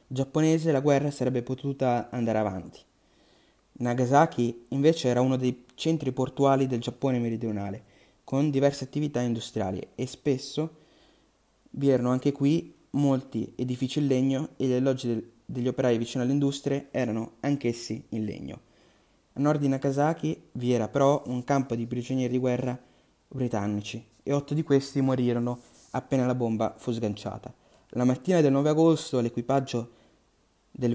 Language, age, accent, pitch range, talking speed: Italian, 20-39, native, 120-140 Hz, 145 wpm